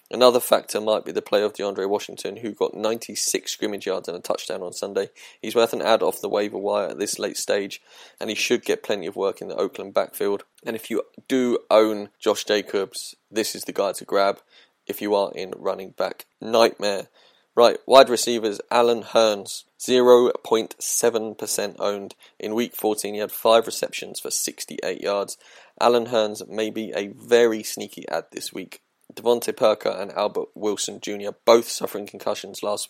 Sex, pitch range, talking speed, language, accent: male, 110-145 Hz, 180 wpm, English, British